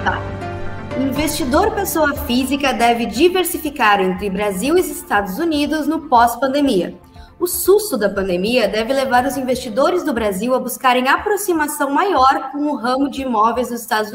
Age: 20-39